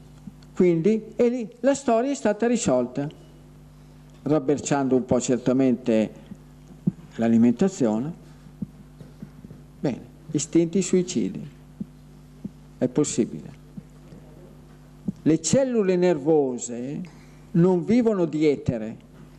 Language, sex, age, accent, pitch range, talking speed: Italian, male, 50-69, native, 145-190 Hz, 75 wpm